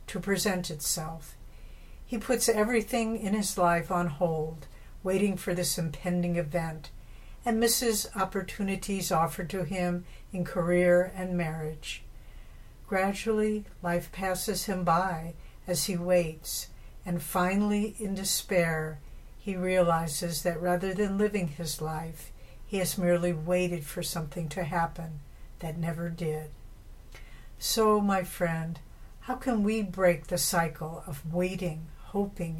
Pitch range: 165-195 Hz